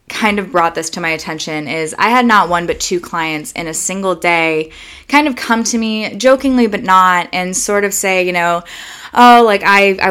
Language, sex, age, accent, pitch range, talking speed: English, female, 20-39, American, 165-210 Hz, 220 wpm